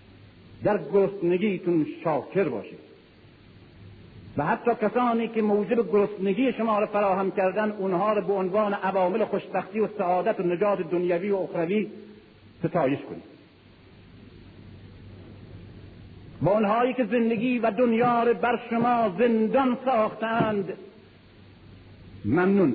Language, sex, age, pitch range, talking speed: Persian, male, 50-69, 170-245 Hz, 105 wpm